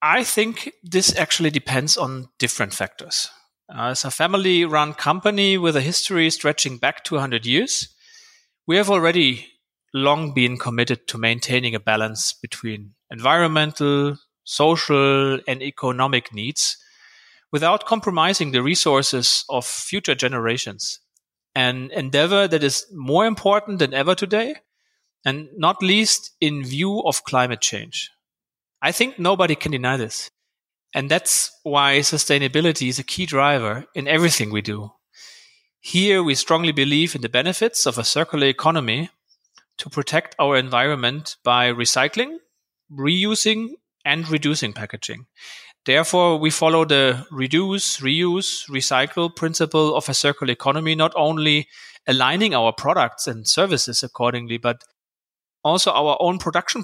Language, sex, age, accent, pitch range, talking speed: English, male, 30-49, German, 130-175 Hz, 130 wpm